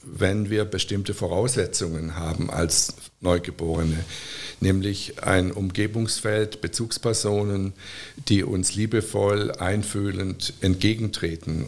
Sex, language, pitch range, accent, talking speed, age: male, German, 90-110 Hz, German, 80 wpm, 60-79